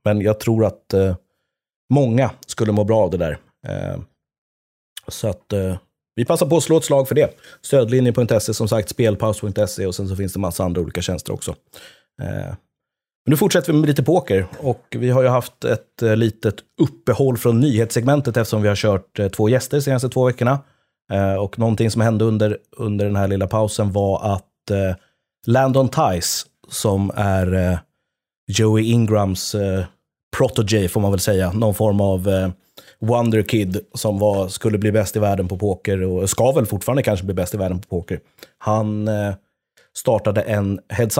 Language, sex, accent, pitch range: English, male, Swedish, 100-120 Hz